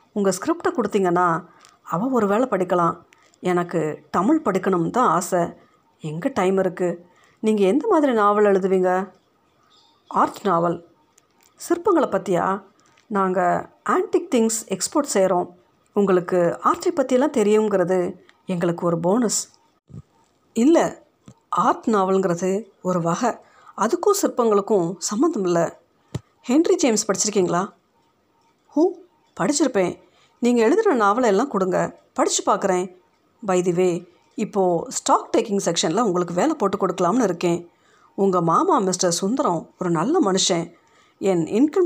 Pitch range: 180-235 Hz